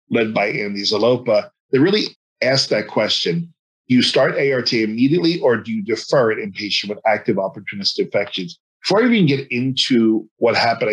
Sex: male